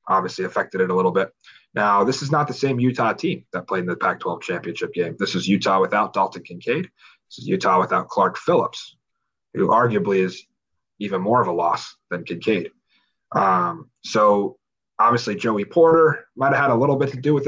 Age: 30-49